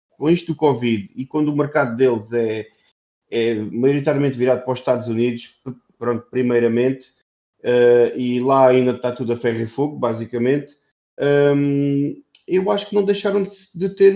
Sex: male